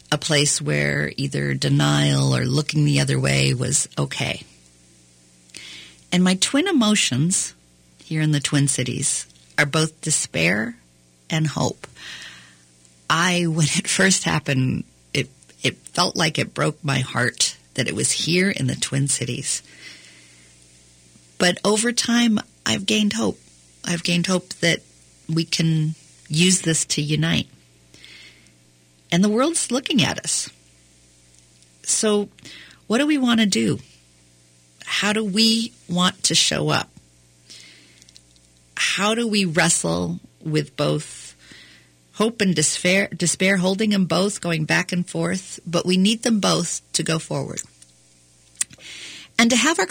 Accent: American